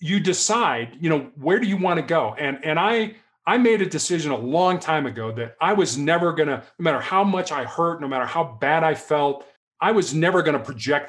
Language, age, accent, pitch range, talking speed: English, 40-59, American, 135-180 Hz, 235 wpm